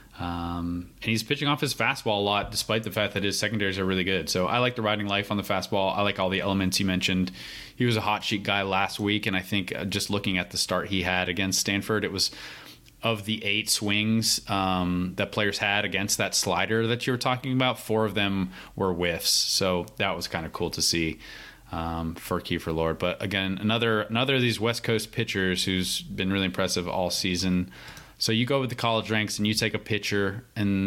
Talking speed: 225 wpm